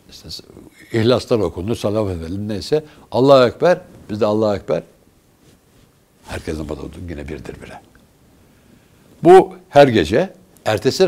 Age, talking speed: 60-79, 115 wpm